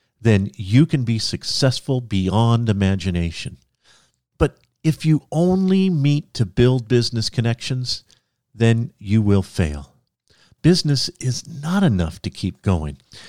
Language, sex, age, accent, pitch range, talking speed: English, male, 50-69, American, 100-150 Hz, 120 wpm